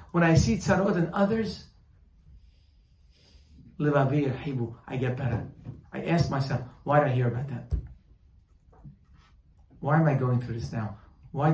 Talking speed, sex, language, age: 135 wpm, male, English, 30-49